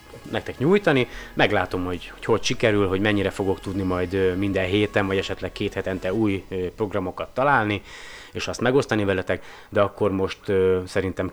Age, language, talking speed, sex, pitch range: 30-49, Hungarian, 155 wpm, male, 90-115 Hz